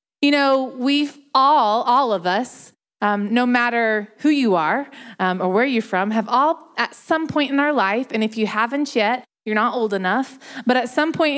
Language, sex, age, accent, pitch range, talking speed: English, female, 20-39, American, 210-260 Hz, 205 wpm